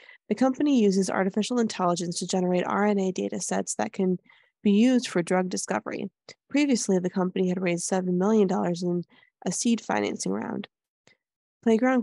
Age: 20-39